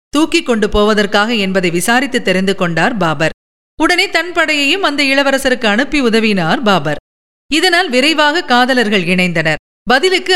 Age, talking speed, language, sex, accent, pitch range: 50-69, 120 wpm, Tamil, female, native, 205-295 Hz